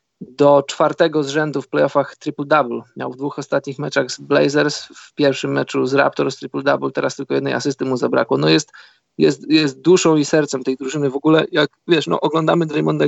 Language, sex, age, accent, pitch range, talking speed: Polish, male, 20-39, native, 140-160 Hz, 205 wpm